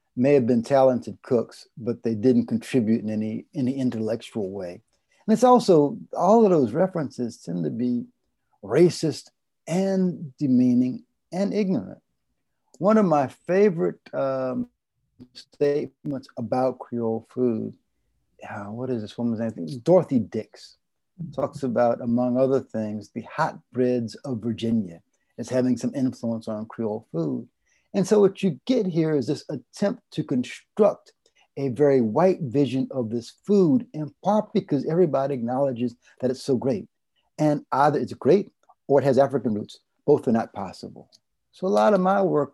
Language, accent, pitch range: English, American, 120-175 Hz